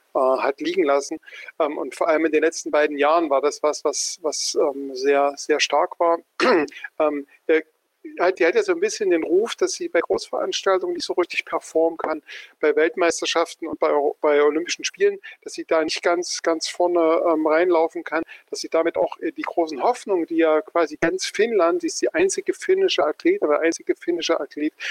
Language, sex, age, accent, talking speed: German, male, 50-69, German, 190 wpm